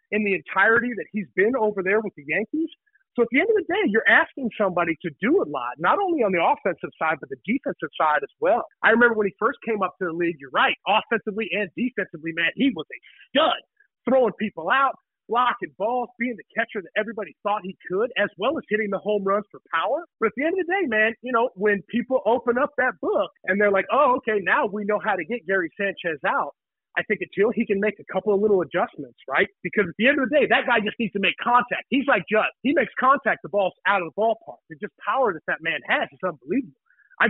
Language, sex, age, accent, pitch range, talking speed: English, male, 40-59, American, 190-245 Hz, 255 wpm